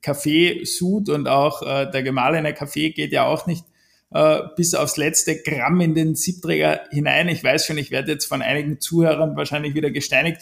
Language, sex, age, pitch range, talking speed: German, male, 50-69, 150-180 Hz, 190 wpm